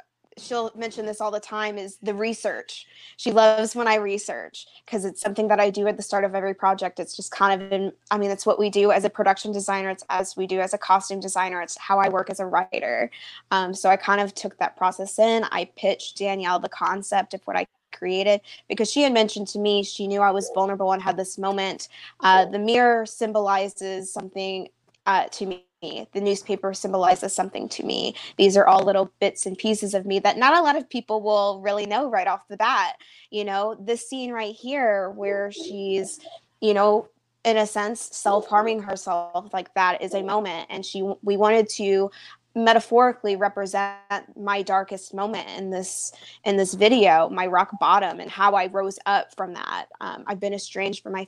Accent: American